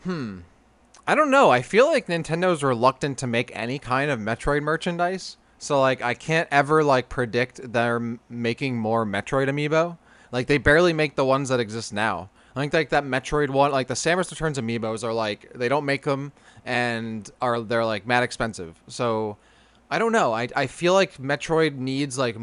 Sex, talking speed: male, 195 wpm